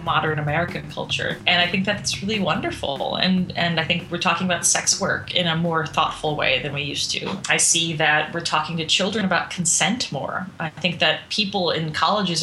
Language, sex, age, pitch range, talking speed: English, female, 20-39, 155-180 Hz, 210 wpm